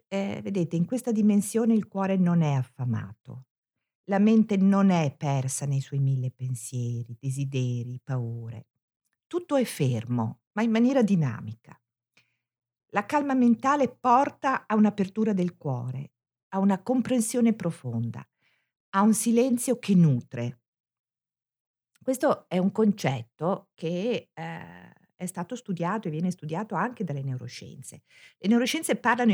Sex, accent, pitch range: female, native, 135-225 Hz